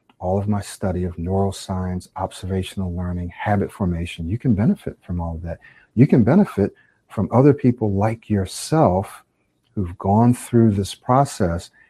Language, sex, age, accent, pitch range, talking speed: English, male, 50-69, American, 90-115 Hz, 150 wpm